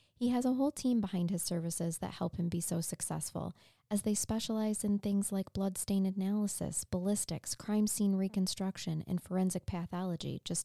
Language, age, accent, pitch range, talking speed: English, 20-39, American, 170-205 Hz, 170 wpm